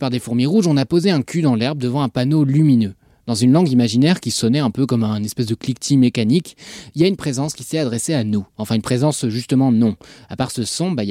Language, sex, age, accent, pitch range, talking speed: French, male, 20-39, French, 120-155 Hz, 275 wpm